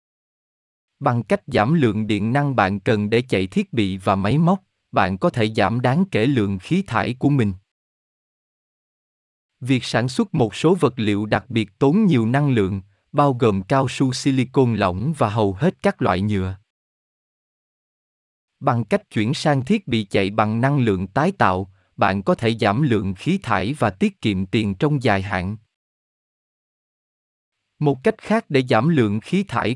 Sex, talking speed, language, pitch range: male, 170 wpm, Vietnamese, 100-145 Hz